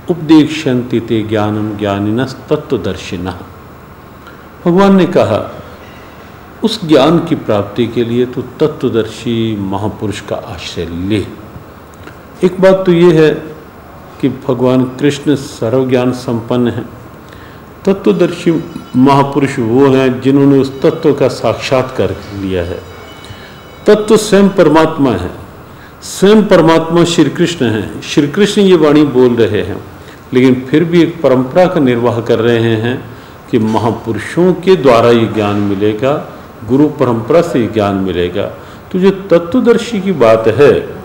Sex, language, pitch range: male, Hindi, 110-160 Hz